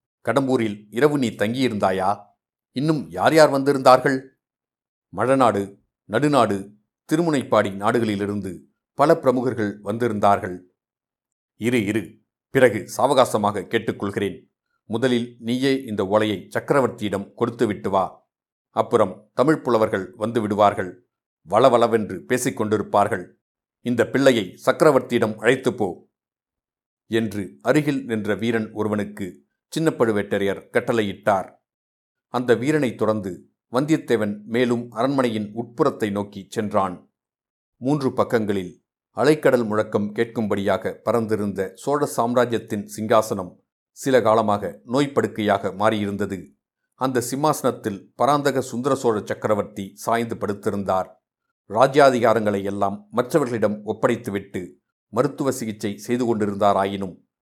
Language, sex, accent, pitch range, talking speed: Tamil, male, native, 105-130 Hz, 85 wpm